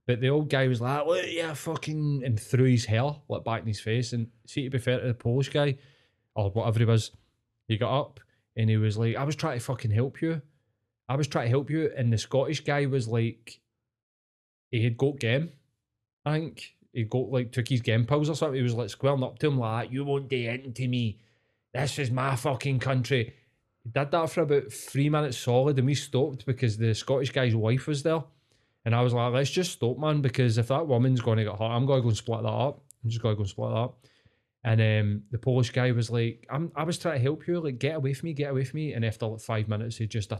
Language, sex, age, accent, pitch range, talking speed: English, male, 20-39, British, 115-135 Hz, 260 wpm